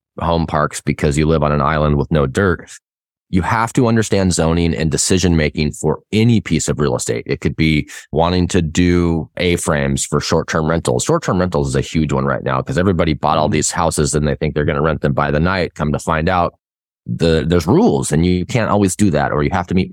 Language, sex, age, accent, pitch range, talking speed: English, male, 20-39, American, 75-90 Hz, 235 wpm